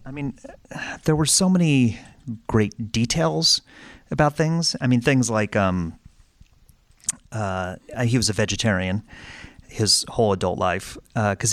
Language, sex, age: English, male, 30-49